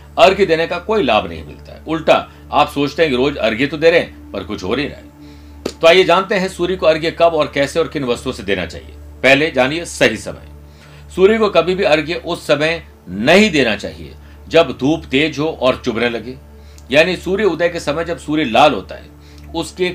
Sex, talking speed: male, 125 wpm